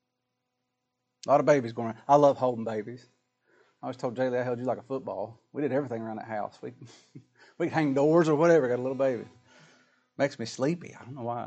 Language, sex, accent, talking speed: English, male, American, 225 wpm